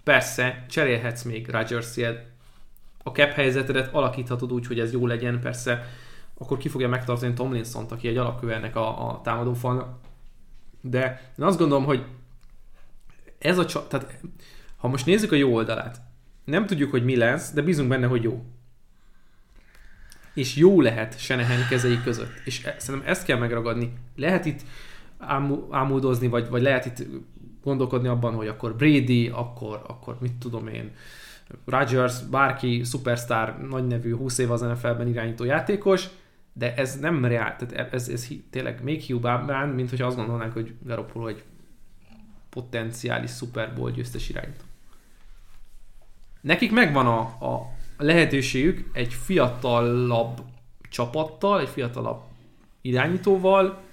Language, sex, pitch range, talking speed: Hungarian, male, 115-135 Hz, 135 wpm